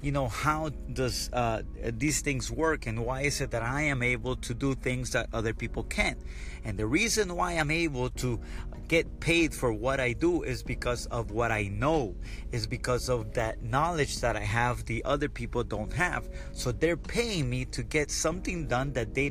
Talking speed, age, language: 200 wpm, 30-49, English